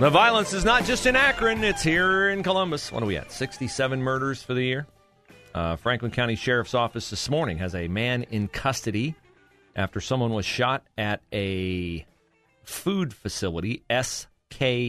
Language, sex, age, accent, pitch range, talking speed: English, male, 40-59, American, 90-130 Hz, 165 wpm